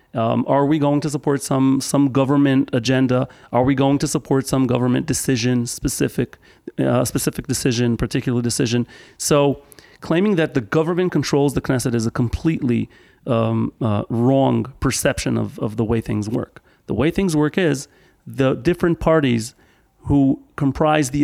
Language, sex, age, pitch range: English, male, 40-59, 125-160 Hz